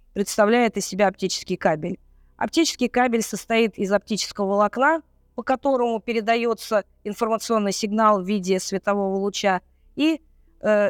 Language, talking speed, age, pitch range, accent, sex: Russian, 120 wpm, 20-39, 200-250 Hz, native, female